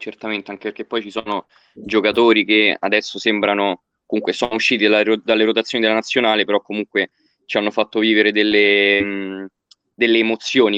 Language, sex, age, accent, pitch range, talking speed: Italian, male, 20-39, native, 105-120 Hz, 155 wpm